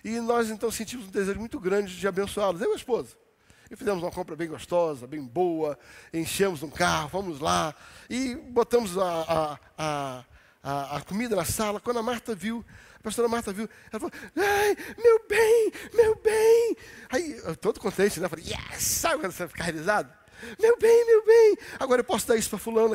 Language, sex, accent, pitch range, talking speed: Portuguese, male, Brazilian, 185-255 Hz, 200 wpm